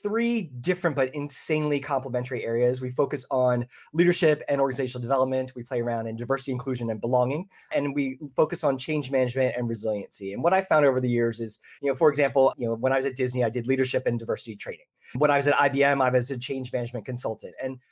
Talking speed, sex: 220 wpm, male